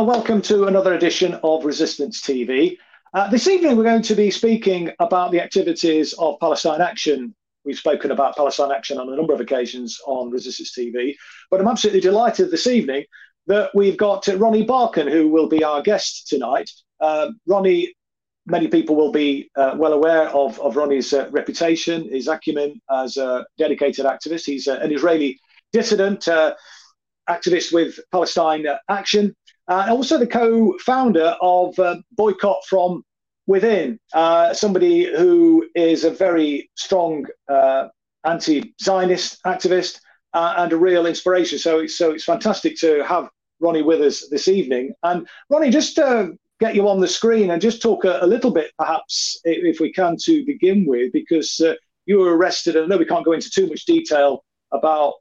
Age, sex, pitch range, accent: 40-59, male, 155-210 Hz, British